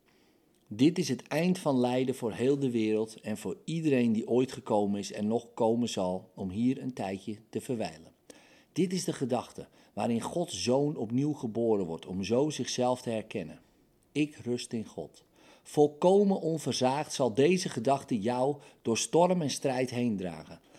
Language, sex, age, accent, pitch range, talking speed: Dutch, male, 50-69, Dutch, 110-150 Hz, 165 wpm